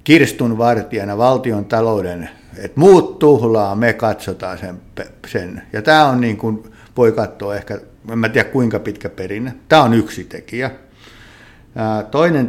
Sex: male